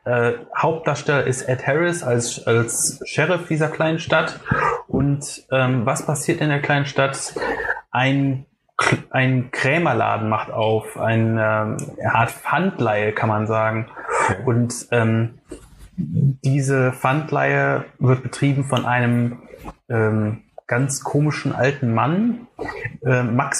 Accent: German